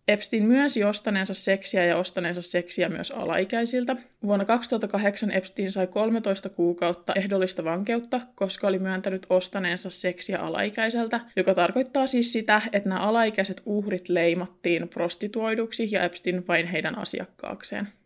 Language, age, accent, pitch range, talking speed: Finnish, 20-39, native, 185-230 Hz, 125 wpm